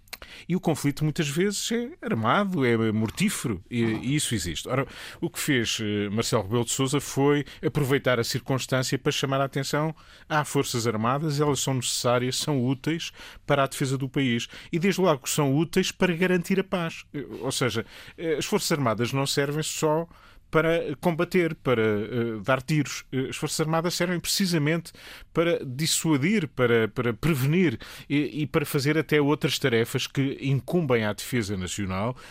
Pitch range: 115-155 Hz